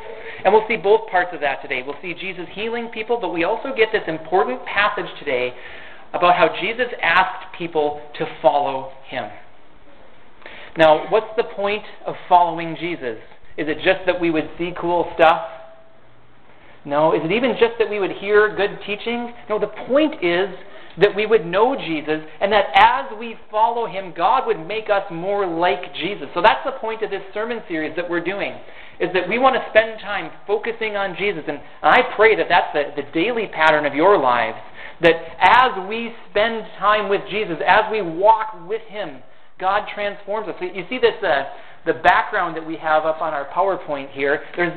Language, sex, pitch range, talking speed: English, male, 160-220 Hz, 190 wpm